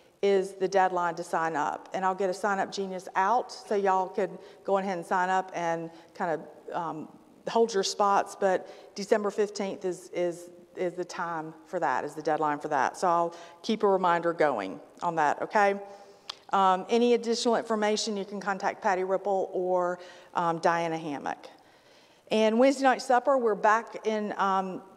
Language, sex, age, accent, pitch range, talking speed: English, female, 40-59, American, 175-205 Hz, 180 wpm